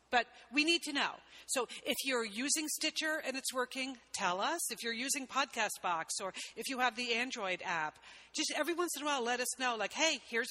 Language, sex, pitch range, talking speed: English, female, 205-275 Hz, 225 wpm